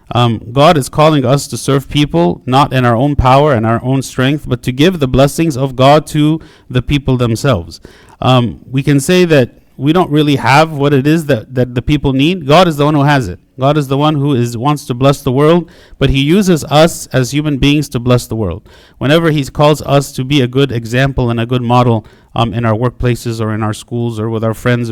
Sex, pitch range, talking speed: male, 120-145 Hz, 240 wpm